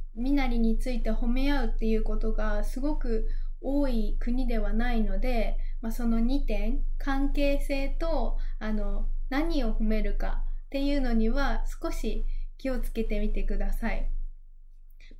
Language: Japanese